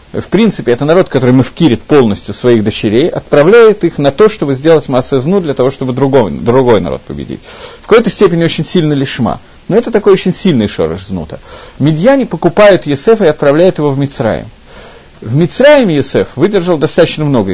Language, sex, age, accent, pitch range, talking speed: Russian, male, 50-69, native, 130-195 Hz, 180 wpm